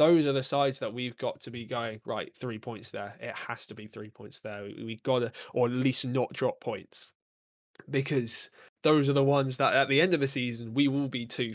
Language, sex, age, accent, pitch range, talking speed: English, male, 20-39, British, 115-135 Hz, 245 wpm